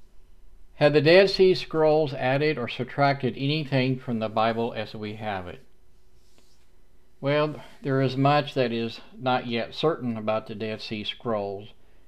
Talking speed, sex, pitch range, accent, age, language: 150 wpm, male, 110-125 Hz, American, 50-69, English